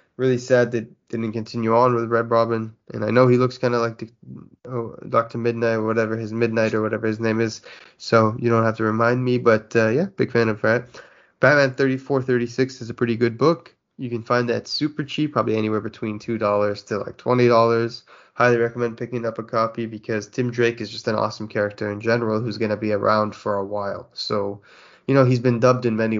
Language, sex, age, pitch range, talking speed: English, male, 20-39, 110-120 Hz, 225 wpm